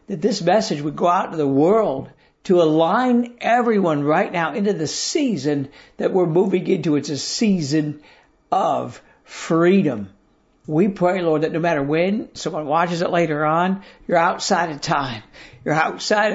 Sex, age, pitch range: male, 60-79, 155-205 Hz